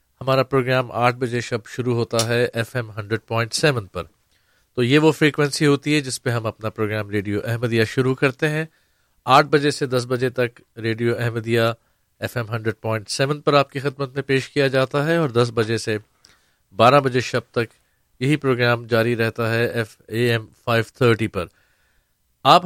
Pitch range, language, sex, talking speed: 115-140 Hz, Urdu, male, 185 wpm